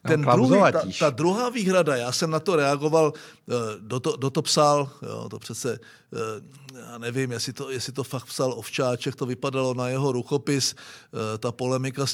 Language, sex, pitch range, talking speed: Czech, male, 135-160 Hz, 180 wpm